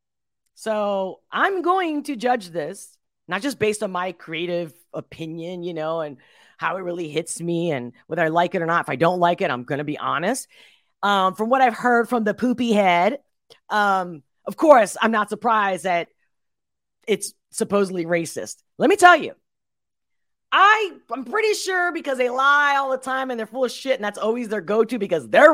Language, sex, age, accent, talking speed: English, female, 30-49, American, 195 wpm